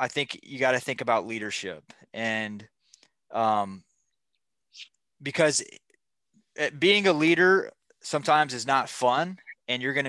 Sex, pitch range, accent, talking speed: male, 110-140 Hz, American, 125 wpm